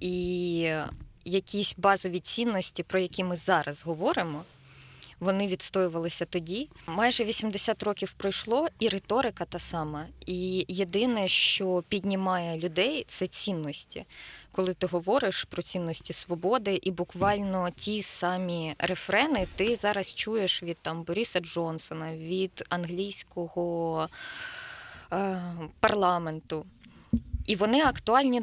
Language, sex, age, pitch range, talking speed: Ukrainian, female, 20-39, 170-200 Hz, 110 wpm